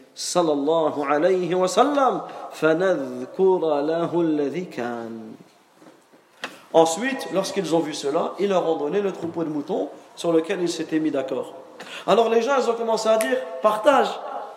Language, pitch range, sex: French, 155-200 Hz, male